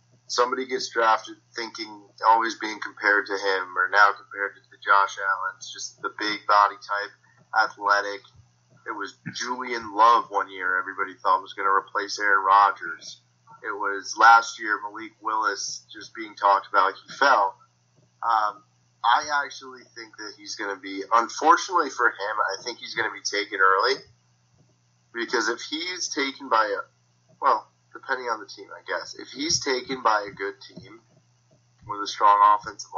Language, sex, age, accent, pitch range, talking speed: English, male, 30-49, American, 100-130 Hz, 165 wpm